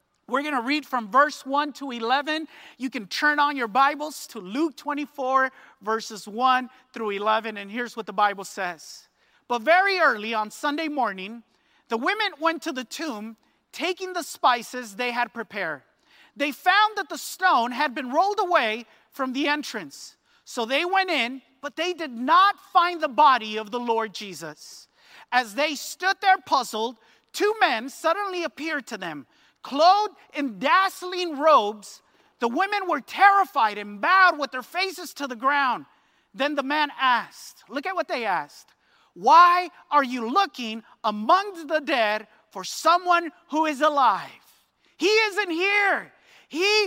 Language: English